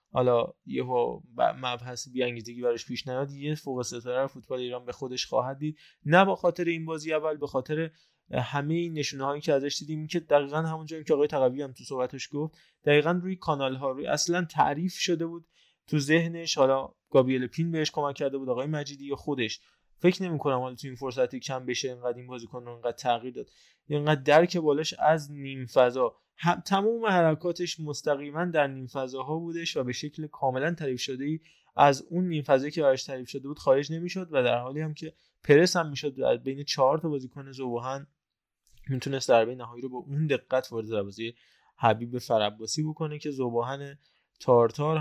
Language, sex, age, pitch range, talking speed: Persian, male, 20-39, 125-155 Hz, 185 wpm